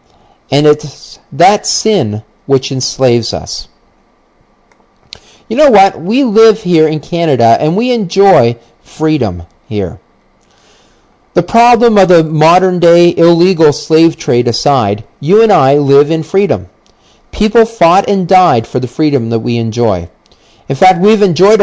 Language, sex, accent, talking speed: English, male, American, 140 wpm